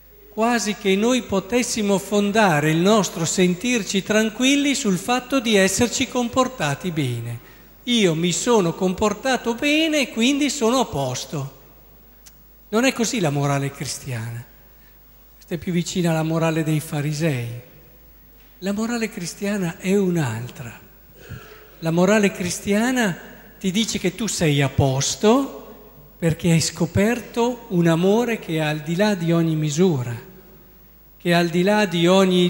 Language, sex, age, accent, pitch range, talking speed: Italian, male, 50-69, native, 160-215 Hz, 135 wpm